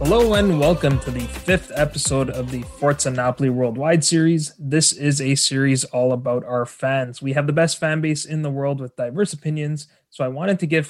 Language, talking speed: English, 210 wpm